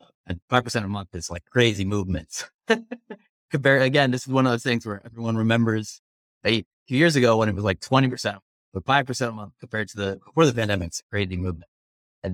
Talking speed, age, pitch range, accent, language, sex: 200 wpm, 30-49, 90-115 Hz, American, English, male